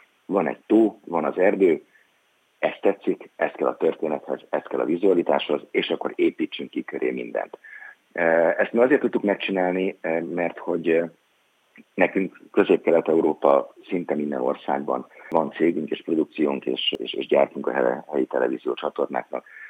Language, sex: Hungarian, male